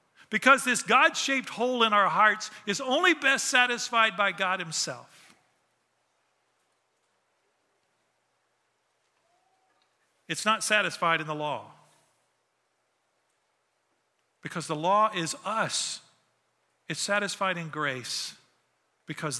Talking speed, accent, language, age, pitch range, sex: 95 wpm, American, English, 50-69, 155-210 Hz, male